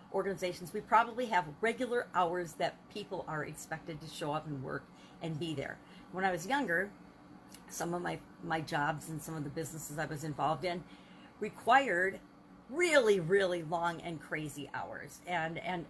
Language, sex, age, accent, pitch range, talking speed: English, female, 50-69, American, 165-205 Hz, 170 wpm